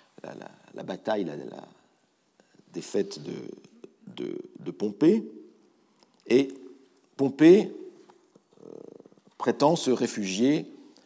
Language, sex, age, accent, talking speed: French, male, 50-69, French, 90 wpm